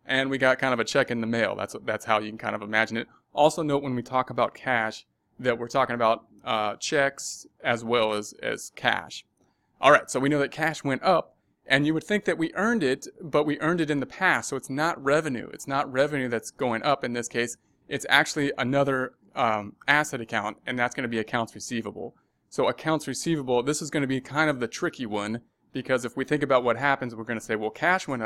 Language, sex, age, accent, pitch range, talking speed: English, male, 30-49, American, 120-145 Hz, 240 wpm